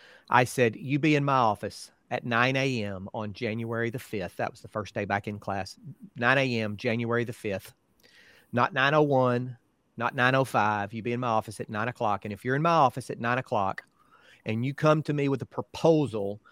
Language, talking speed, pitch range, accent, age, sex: English, 205 wpm, 110-130 Hz, American, 40-59, male